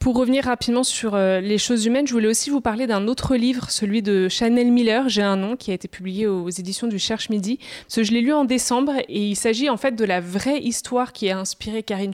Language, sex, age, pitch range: French, female, 20-39, 190-235 Hz